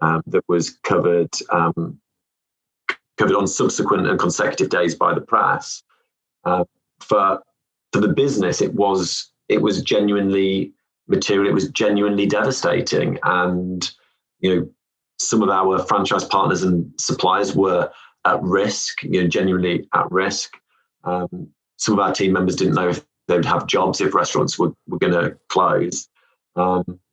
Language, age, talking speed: English, 30-49, 150 wpm